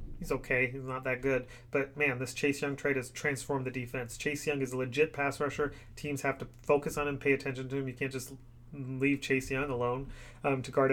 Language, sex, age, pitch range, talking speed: English, male, 30-49, 125-140 Hz, 235 wpm